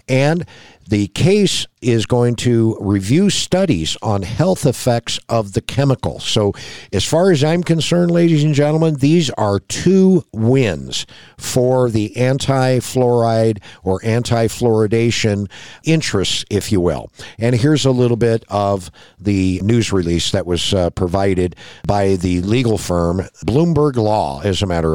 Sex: male